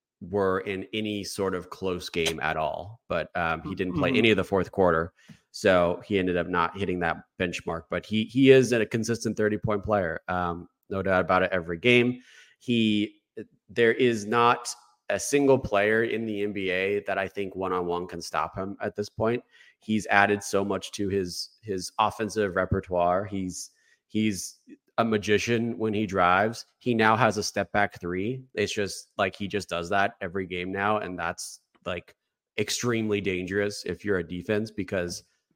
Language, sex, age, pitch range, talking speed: English, male, 30-49, 95-115 Hz, 180 wpm